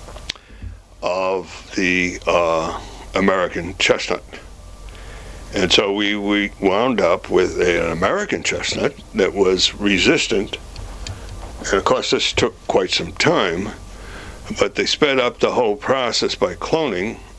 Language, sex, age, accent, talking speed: English, male, 60-79, American, 125 wpm